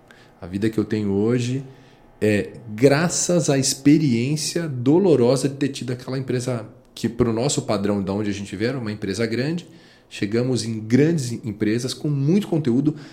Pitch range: 110-150 Hz